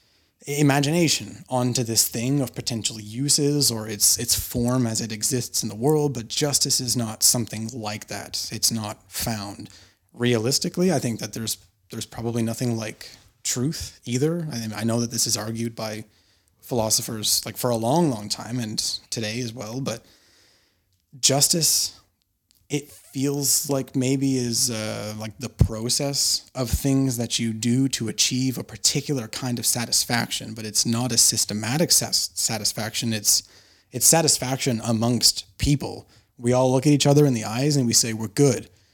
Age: 30-49